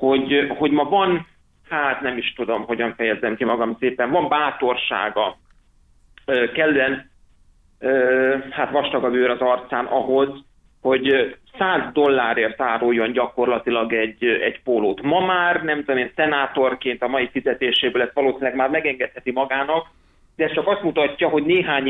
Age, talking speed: 30-49, 140 wpm